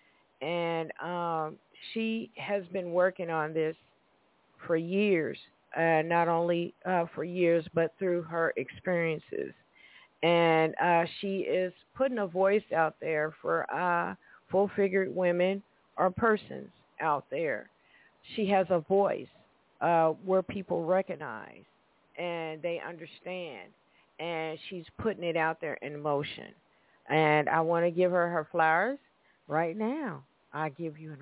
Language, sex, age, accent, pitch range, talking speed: English, female, 50-69, American, 160-185 Hz, 135 wpm